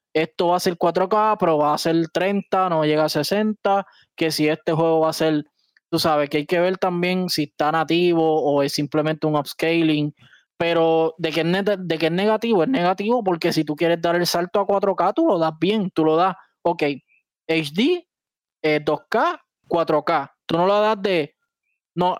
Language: Spanish